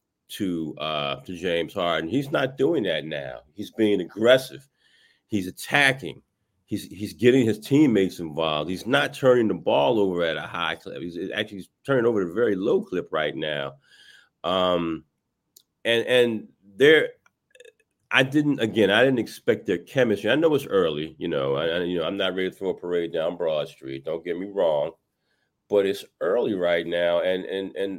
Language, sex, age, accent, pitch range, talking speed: English, male, 40-59, American, 95-140 Hz, 185 wpm